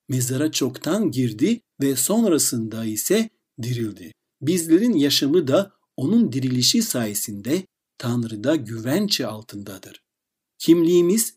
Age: 60-79